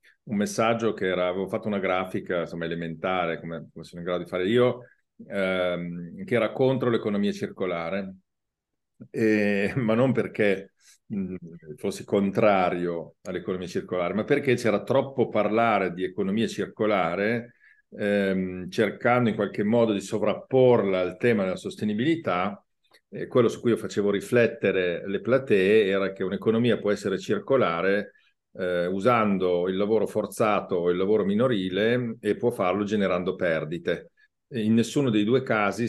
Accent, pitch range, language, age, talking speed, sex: native, 90-115 Hz, Italian, 50-69, 140 wpm, male